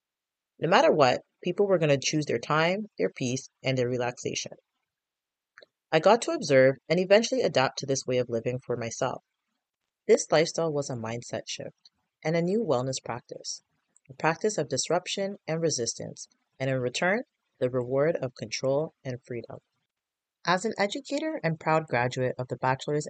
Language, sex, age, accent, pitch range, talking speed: English, female, 30-49, American, 125-180 Hz, 165 wpm